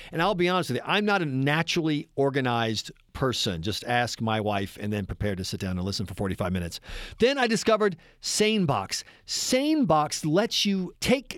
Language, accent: English, American